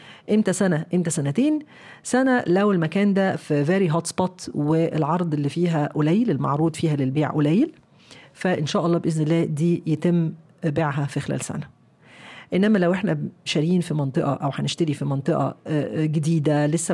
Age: 40-59